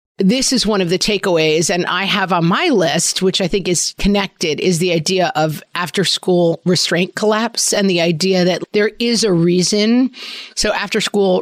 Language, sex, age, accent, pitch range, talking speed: English, female, 40-59, American, 170-205 Hz, 180 wpm